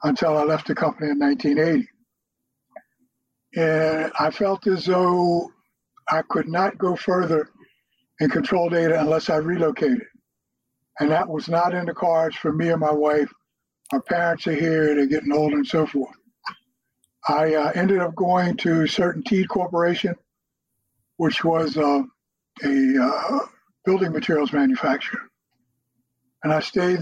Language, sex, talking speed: English, male, 140 wpm